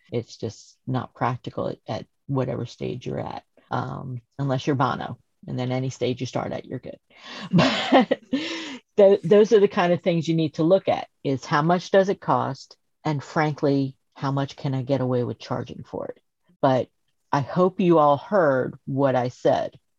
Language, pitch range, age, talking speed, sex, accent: English, 130-160 Hz, 50-69, 190 wpm, female, American